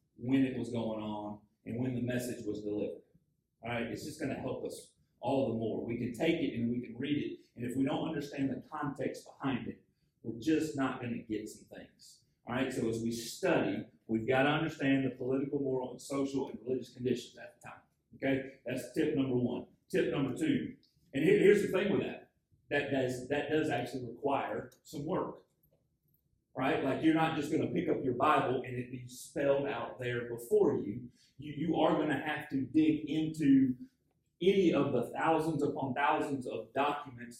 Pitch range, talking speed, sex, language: 125-155 Hz, 205 wpm, male, English